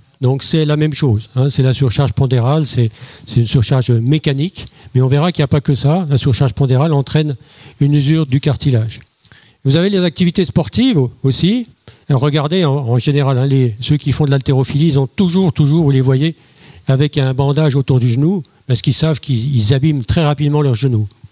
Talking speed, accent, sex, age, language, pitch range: 200 wpm, French, male, 50-69, French, 130-150 Hz